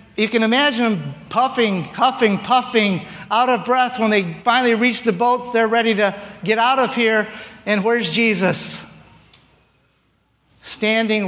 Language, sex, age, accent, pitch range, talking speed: English, male, 50-69, American, 185-245 Hz, 145 wpm